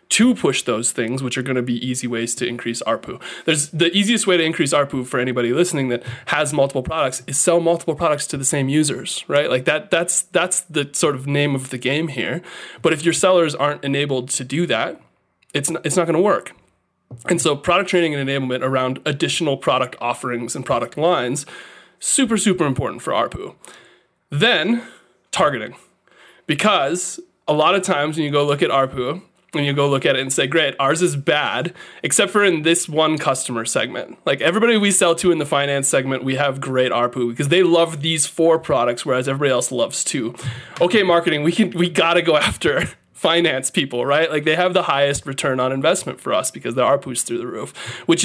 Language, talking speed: English, 210 wpm